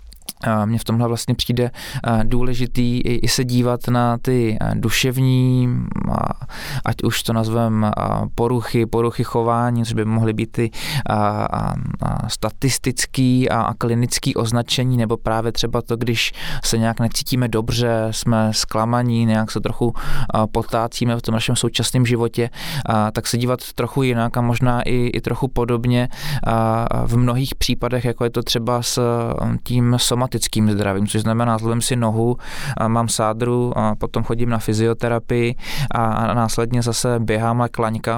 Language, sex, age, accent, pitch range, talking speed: Czech, male, 20-39, native, 115-125 Hz, 140 wpm